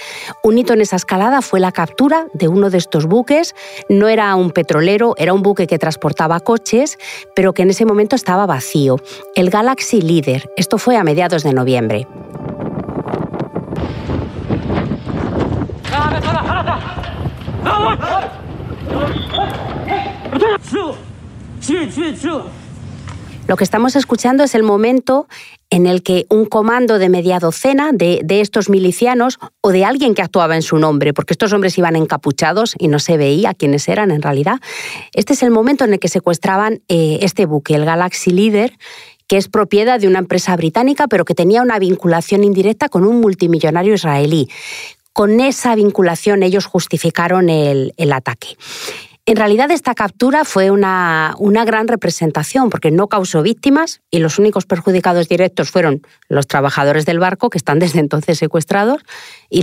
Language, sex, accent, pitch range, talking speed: Spanish, female, Spanish, 165-220 Hz, 150 wpm